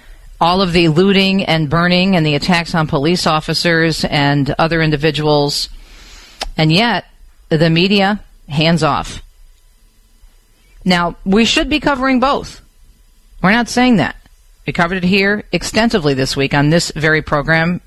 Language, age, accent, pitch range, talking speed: English, 40-59, American, 145-195 Hz, 140 wpm